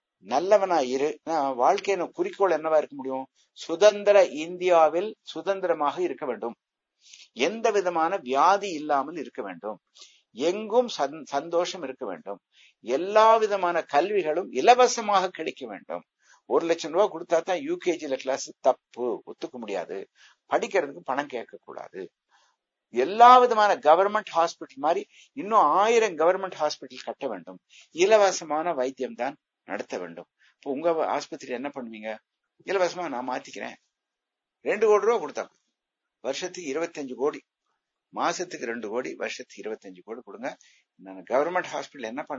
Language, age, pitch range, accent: Tamil, 60-79, 140-200 Hz, native